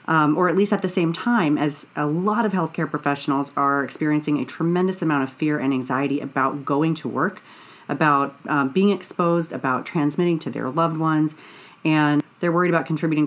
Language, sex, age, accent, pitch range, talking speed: English, female, 40-59, American, 140-180 Hz, 190 wpm